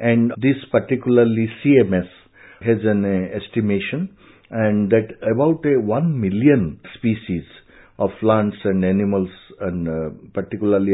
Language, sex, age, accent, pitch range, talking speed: English, male, 60-79, Indian, 100-125 Hz, 120 wpm